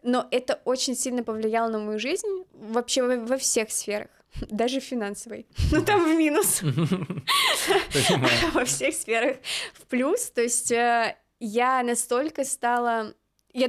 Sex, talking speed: female, 130 wpm